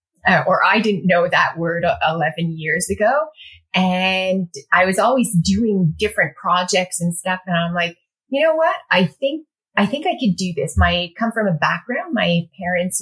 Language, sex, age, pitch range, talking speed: English, female, 30-49, 170-210 Hz, 185 wpm